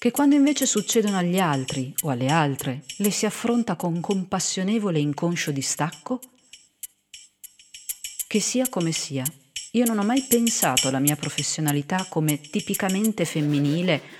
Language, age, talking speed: Italian, 40-59, 135 wpm